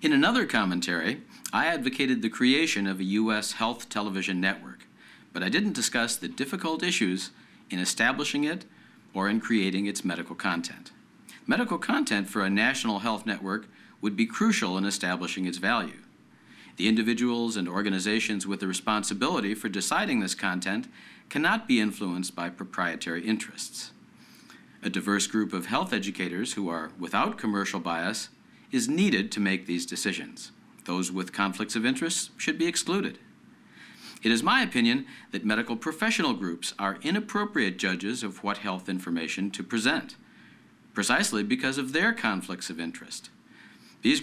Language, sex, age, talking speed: English, male, 50-69, 150 wpm